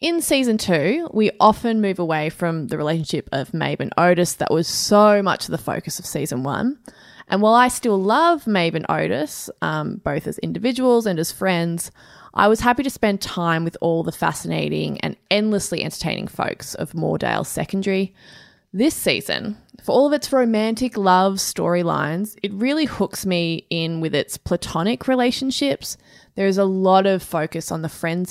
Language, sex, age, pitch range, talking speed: English, female, 20-39, 170-220 Hz, 175 wpm